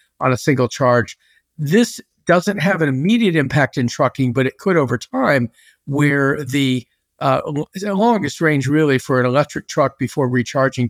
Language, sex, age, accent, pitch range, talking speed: English, male, 50-69, American, 130-170 Hz, 165 wpm